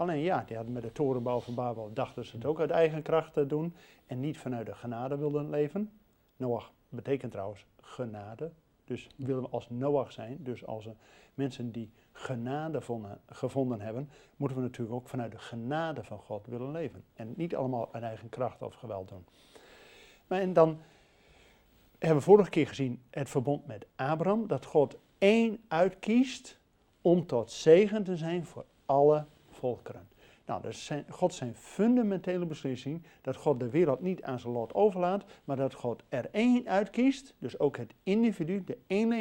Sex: male